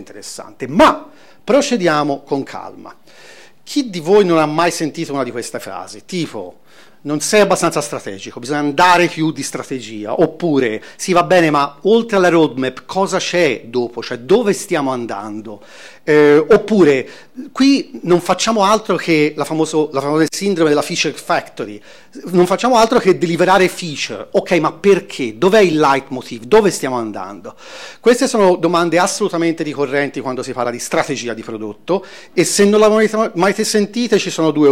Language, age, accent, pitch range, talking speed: Italian, 40-59, native, 130-195 Hz, 160 wpm